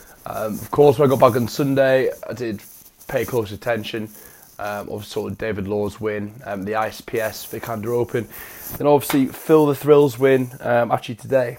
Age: 20-39